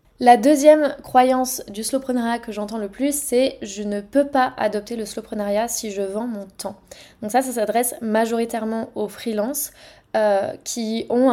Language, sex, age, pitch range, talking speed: French, female, 20-39, 205-245 Hz, 170 wpm